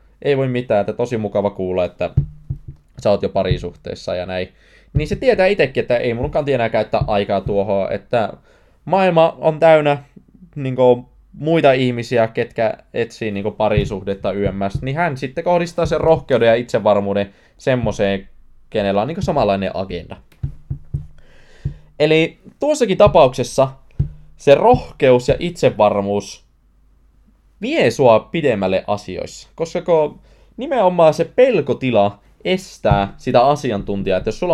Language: Finnish